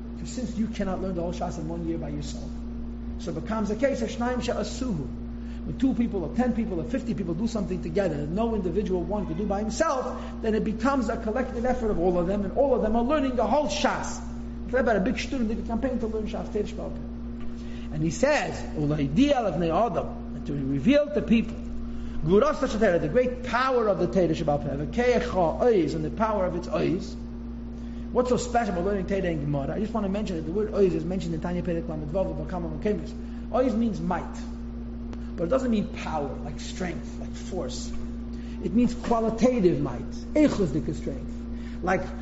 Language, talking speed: English, 180 wpm